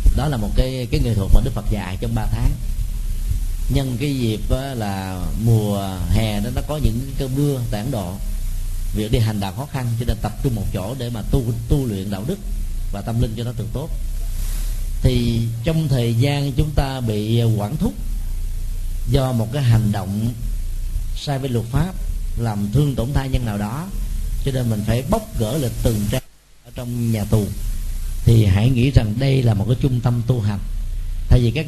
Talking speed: 205 wpm